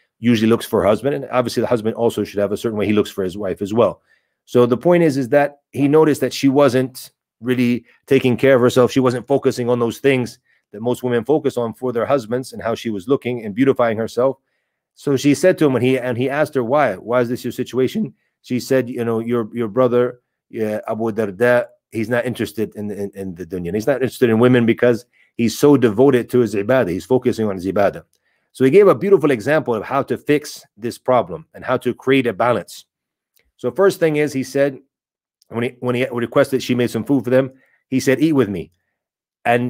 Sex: male